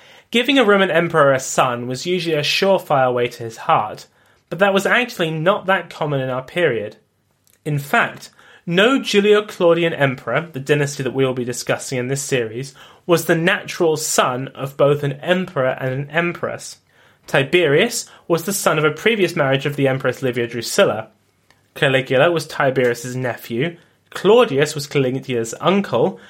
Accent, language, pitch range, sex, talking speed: British, English, 130-175 Hz, male, 160 wpm